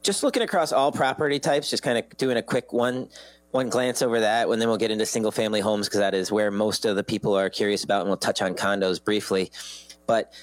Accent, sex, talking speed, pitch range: American, male, 240 wpm, 100-120 Hz